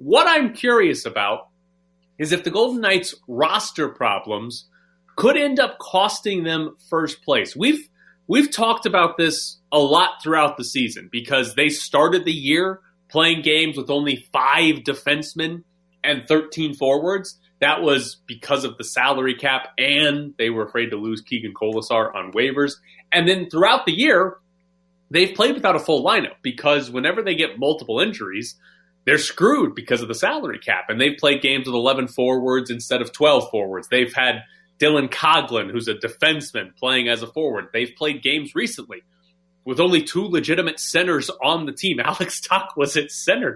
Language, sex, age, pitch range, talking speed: English, male, 30-49, 130-180 Hz, 170 wpm